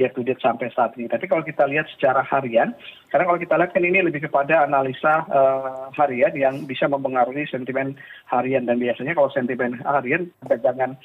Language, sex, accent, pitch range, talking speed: Indonesian, male, native, 125-145 Hz, 165 wpm